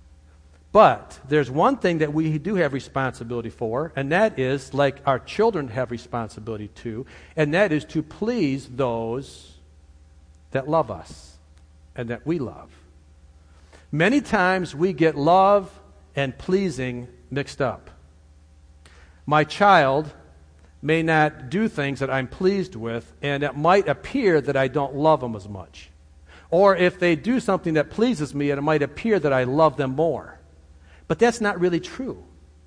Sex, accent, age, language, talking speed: male, American, 50-69, English, 150 wpm